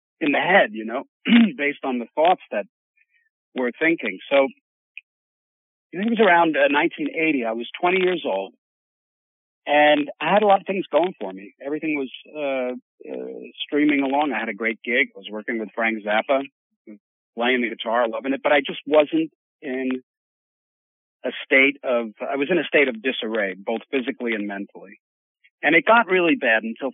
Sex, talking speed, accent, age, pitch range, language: male, 185 wpm, American, 50-69, 115-160 Hz, English